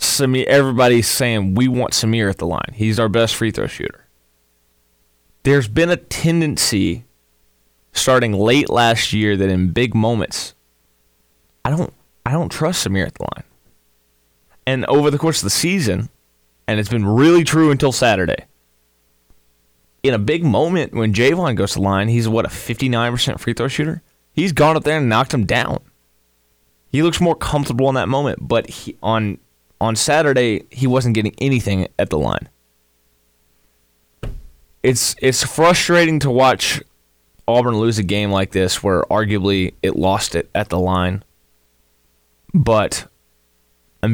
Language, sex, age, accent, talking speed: English, male, 20-39, American, 155 wpm